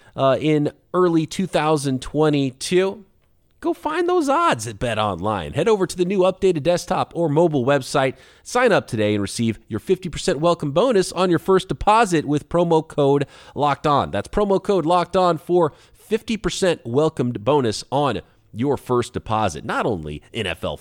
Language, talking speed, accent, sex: English, 160 wpm, American, male